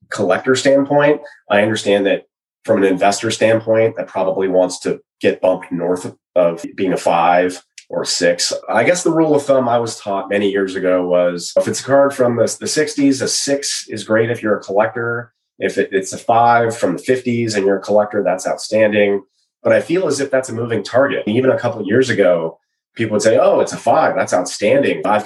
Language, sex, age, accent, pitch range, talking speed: English, male, 30-49, American, 95-120 Hz, 215 wpm